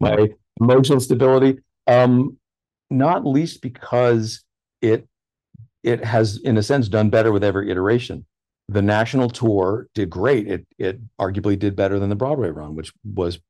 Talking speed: 150 wpm